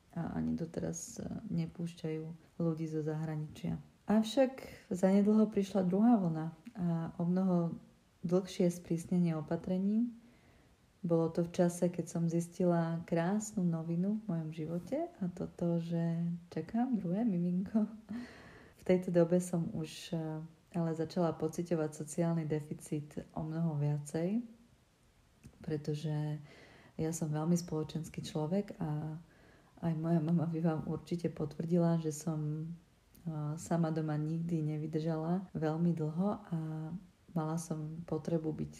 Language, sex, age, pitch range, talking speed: Czech, female, 40-59, 155-180 Hz, 120 wpm